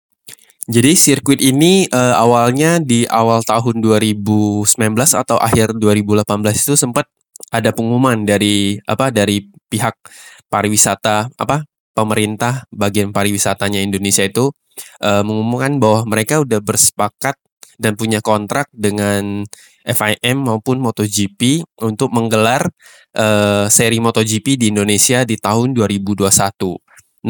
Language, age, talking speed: Indonesian, 20-39, 110 wpm